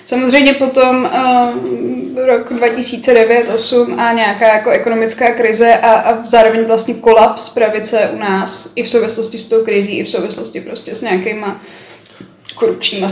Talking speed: 145 wpm